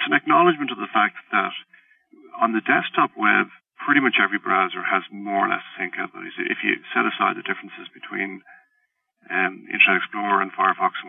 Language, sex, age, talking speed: English, male, 50-69, 190 wpm